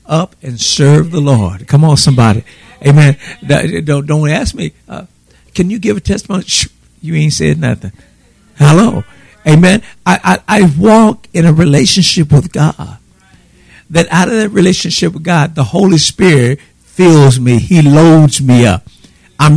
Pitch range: 140-175 Hz